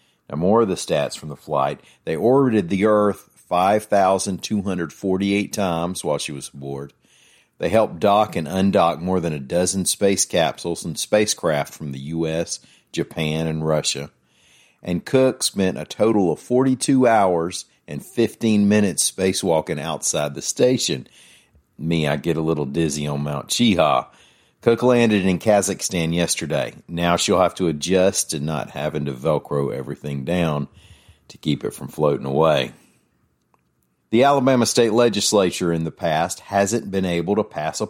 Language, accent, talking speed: English, American, 150 wpm